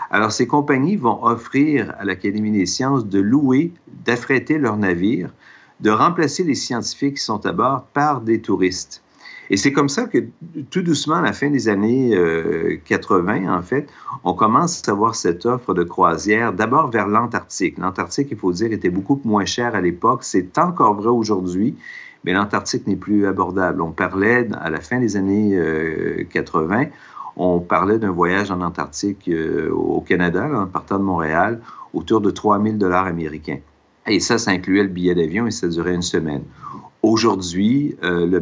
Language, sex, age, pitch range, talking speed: French, male, 50-69, 85-115 Hz, 180 wpm